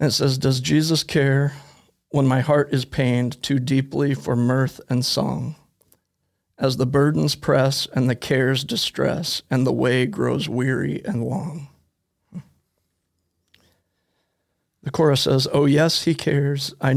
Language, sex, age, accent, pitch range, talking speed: English, male, 40-59, American, 120-145 Hz, 140 wpm